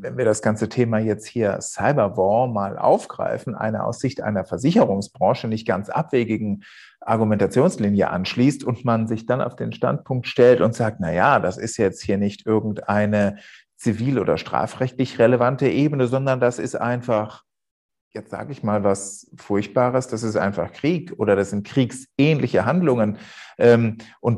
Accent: German